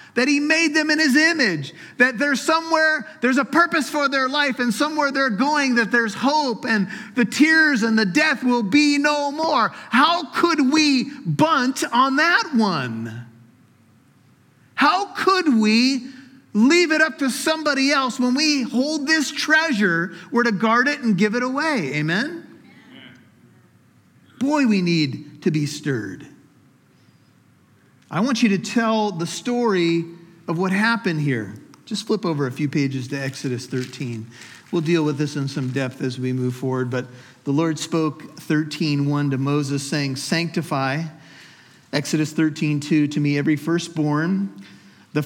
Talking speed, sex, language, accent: 155 wpm, male, English, American